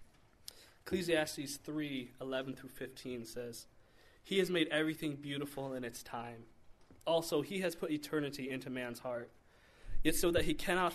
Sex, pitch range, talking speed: male, 120-155 Hz, 145 wpm